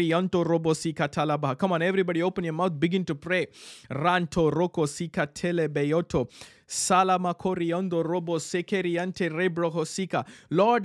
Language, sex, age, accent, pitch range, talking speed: English, male, 20-39, Indian, 150-200 Hz, 75 wpm